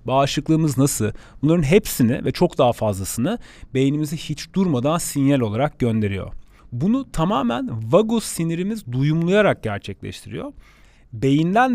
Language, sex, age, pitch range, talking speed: Turkish, male, 40-59, 120-190 Hz, 105 wpm